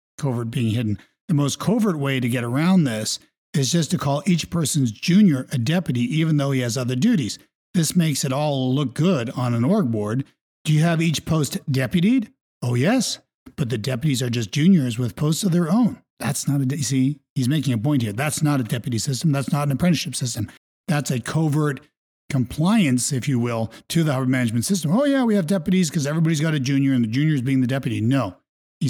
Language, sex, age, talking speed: English, male, 50-69, 215 wpm